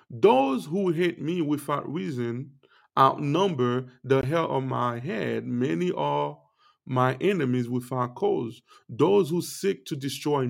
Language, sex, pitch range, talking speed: English, male, 120-160 Hz, 130 wpm